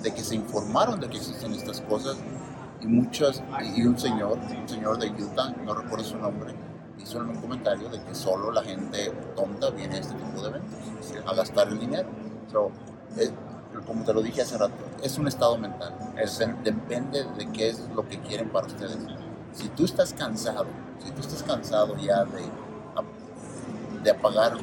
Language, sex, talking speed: English, male, 185 wpm